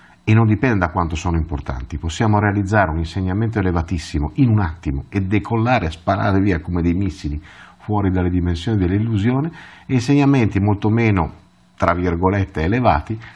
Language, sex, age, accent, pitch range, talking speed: Italian, male, 50-69, native, 80-105 Hz, 155 wpm